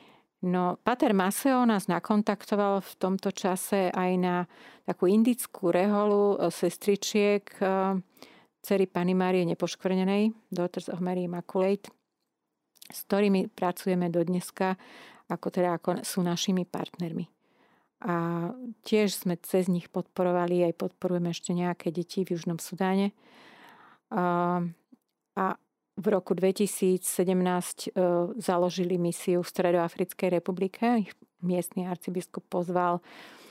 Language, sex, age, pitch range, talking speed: Slovak, female, 40-59, 175-200 Hz, 110 wpm